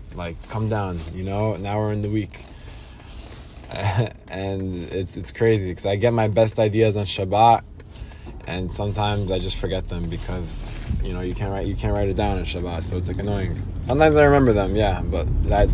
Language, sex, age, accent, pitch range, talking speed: English, male, 20-39, American, 90-115 Hz, 200 wpm